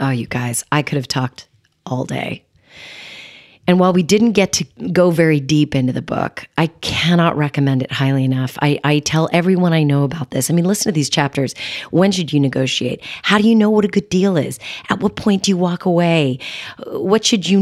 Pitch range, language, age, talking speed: 140-180 Hz, English, 40-59, 220 wpm